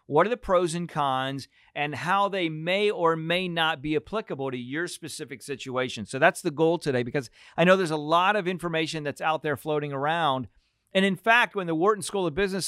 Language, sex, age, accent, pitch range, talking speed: English, male, 40-59, American, 140-185 Hz, 220 wpm